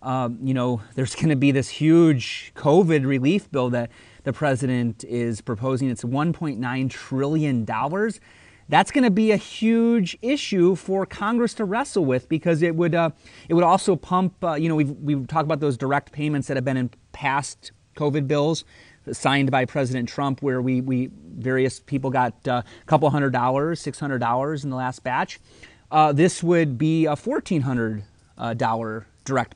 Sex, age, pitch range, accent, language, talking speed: male, 30-49, 130-175 Hz, American, English, 170 wpm